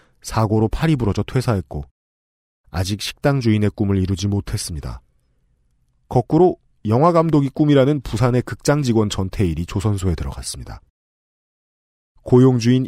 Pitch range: 80-125 Hz